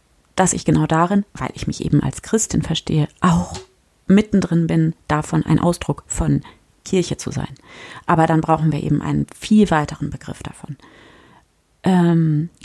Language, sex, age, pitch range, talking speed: German, female, 30-49, 155-190 Hz, 150 wpm